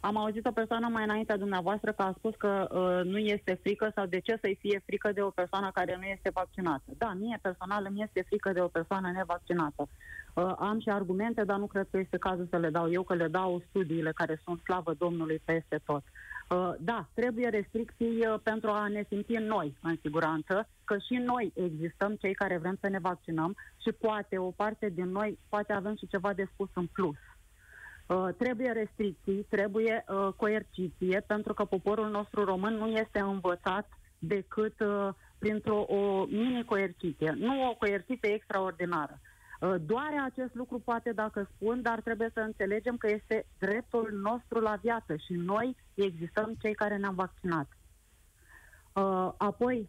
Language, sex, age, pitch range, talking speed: Romanian, female, 30-49, 185-220 Hz, 175 wpm